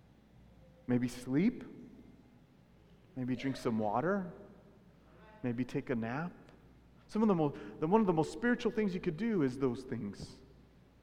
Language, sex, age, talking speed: English, male, 40-59, 145 wpm